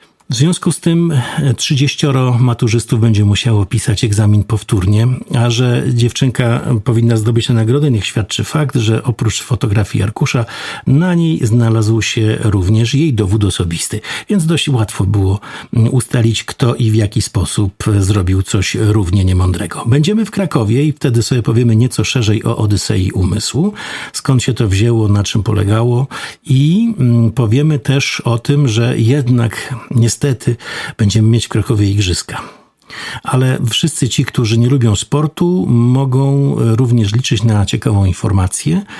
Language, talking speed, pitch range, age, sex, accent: Polish, 140 wpm, 105-130 Hz, 50-69, male, native